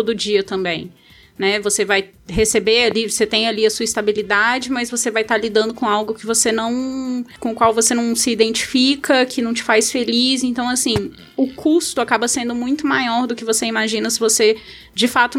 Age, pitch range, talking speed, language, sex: 10-29, 205-245 Hz, 205 wpm, Portuguese, female